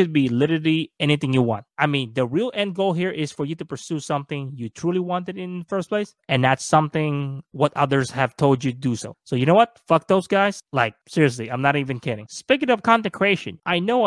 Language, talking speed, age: English, 235 wpm, 20-39